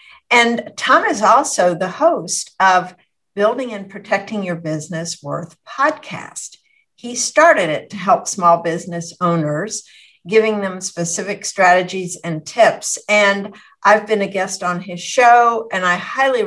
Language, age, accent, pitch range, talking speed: English, 60-79, American, 175-220 Hz, 140 wpm